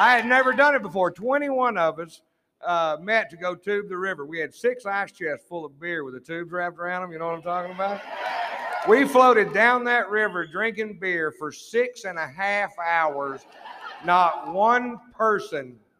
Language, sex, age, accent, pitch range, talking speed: English, male, 50-69, American, 185-265 Hz, 195 wpm